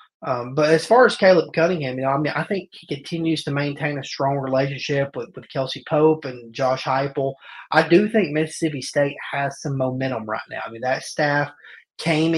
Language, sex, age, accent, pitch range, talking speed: English, male, 30-49, American, 135-155 Hz, 205 wpm